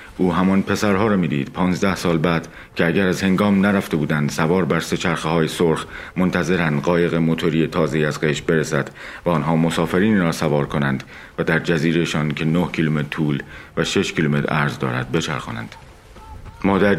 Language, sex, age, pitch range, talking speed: Persian, male, 50-69, 75-95 Hz, 165 wpm